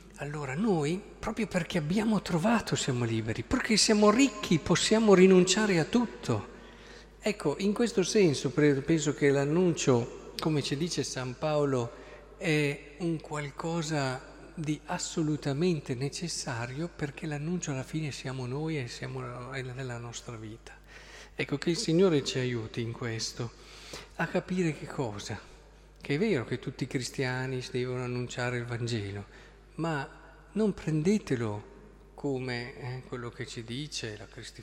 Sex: male